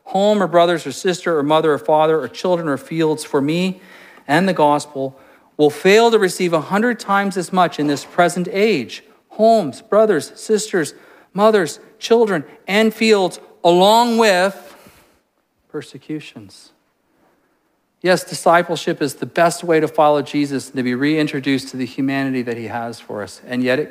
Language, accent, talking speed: English, American, 165 wpm